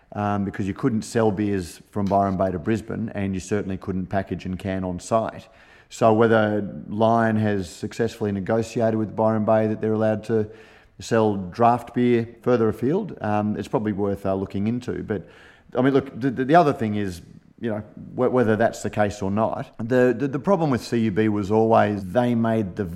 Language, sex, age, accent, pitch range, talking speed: English, male, 30-49, Australian, 100-115 Hz, 195 wpm